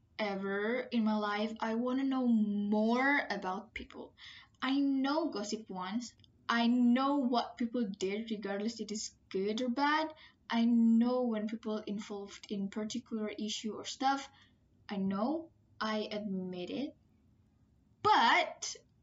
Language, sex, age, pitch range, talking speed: English, female, 10-29, 210-275 Hz, 130 wpm